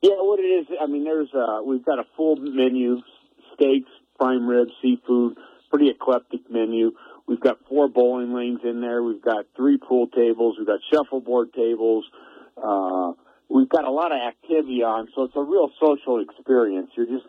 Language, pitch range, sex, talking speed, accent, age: English, 120-185 Hz, male, 180 wpm, American, 50-69